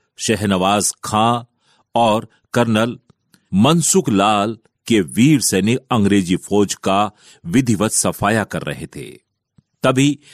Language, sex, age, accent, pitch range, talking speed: Hindi, male, 40-59, native, 100-130 Hz, 105 wpm